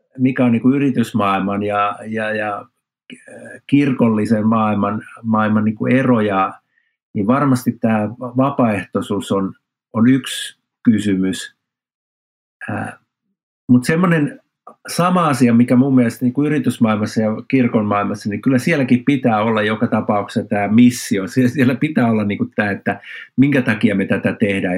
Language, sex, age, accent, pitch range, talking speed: Finnish, male, 50-69, native, 105-135 Hz, 115 wpm